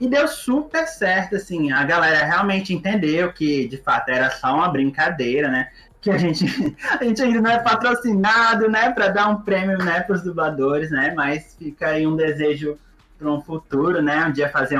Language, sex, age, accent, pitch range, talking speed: Portuguese, male, 20-39, Brazilian, 150-220 Hz, 185 wpm